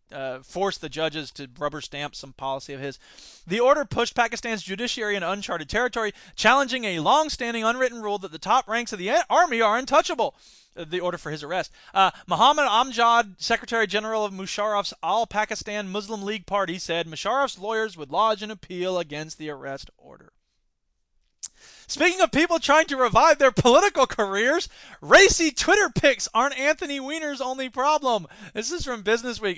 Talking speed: 165 wpm